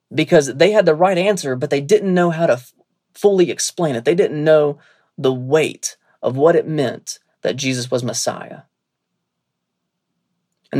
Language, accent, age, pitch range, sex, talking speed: English, American, 30-49, 125-155 Hz, male, 165 wpm